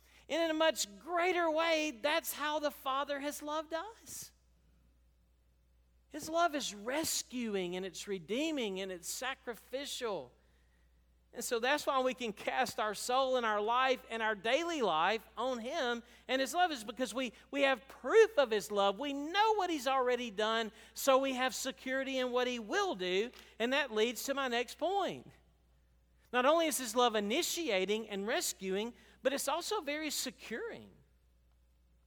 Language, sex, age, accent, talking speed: English, male, 50-69, American, 165 wpm